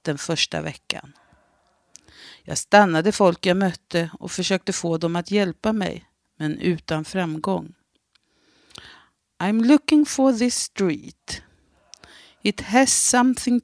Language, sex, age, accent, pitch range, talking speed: Swedish, female, 50-69, native, 160-215 Hz, 115 wpm